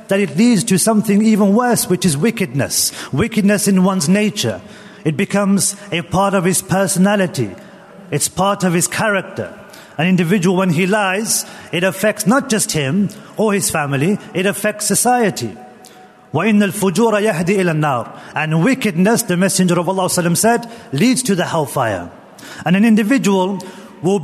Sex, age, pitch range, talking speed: male, 40-59, 175-215 Hz, 145 wpm